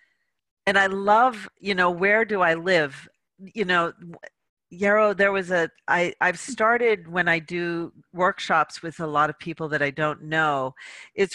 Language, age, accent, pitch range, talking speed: English, 40-59, American, 150-180 Hz, 165 wpm